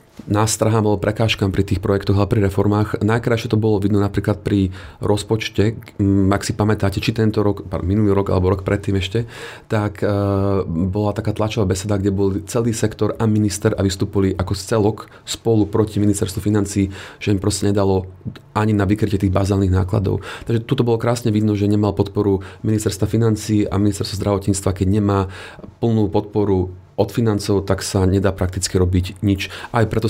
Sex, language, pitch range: male, Slovak, 100-110 Hz